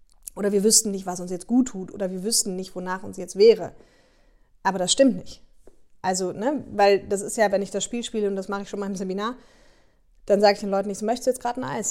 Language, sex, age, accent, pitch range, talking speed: German, female, 20-39, German, 190-235 Hz, 260 wpm